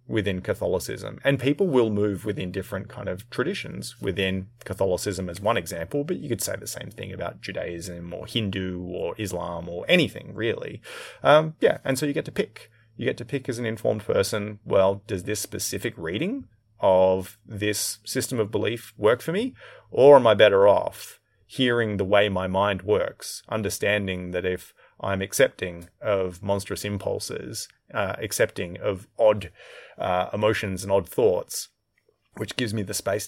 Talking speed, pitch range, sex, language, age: 170 wpm, 95-115 Hz, male, English, 30-49